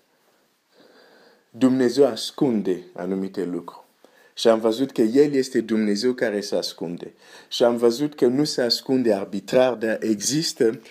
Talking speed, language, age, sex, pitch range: 130 wpm, Romanian, 50-69, male, 105-125 Hz